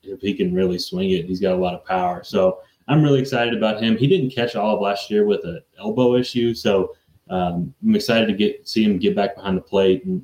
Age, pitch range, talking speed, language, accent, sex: 20-39, 95-135 Hz, 250 wpm, English, American, male